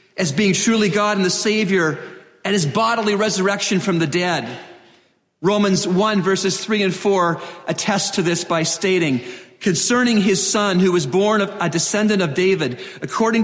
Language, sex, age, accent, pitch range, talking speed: English, male, 40-59, American, 150-195 Hz, 165 wpm